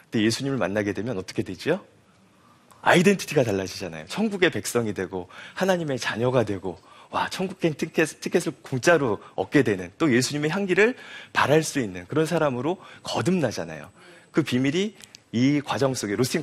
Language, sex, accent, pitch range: Korean, male, native, 105-175 Hz